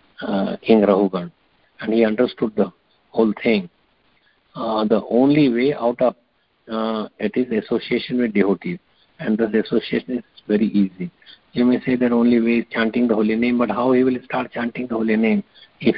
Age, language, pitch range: 50-69, English, 110-125 Hz